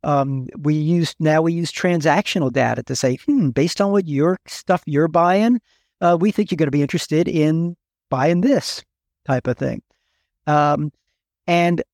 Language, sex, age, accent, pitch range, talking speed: English, male, 50-69, American, 135-185 Hz, 170 wpm